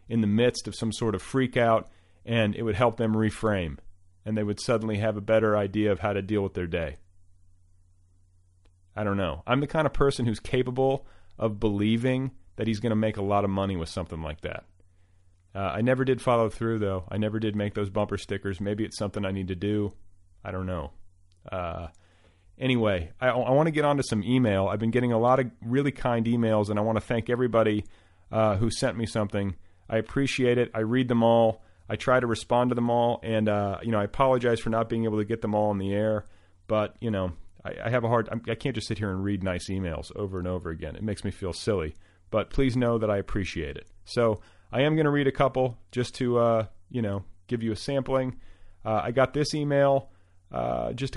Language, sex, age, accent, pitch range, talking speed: English, male, 40-59, American, 95-120 Hz, 230 wpm